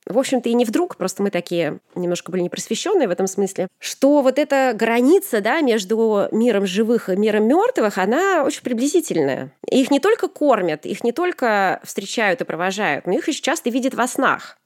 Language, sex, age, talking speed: Russian, female, 20-39, 185 wpm